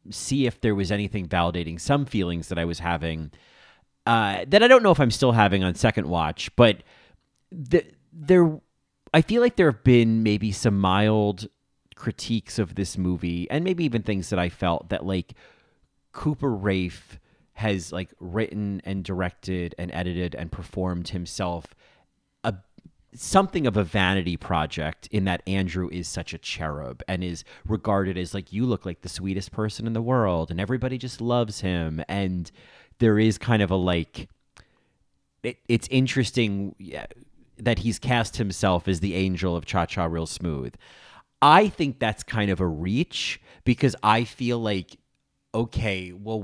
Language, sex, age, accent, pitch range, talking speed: English, male, 30-49, American, 90-115 Hz, 160 wpm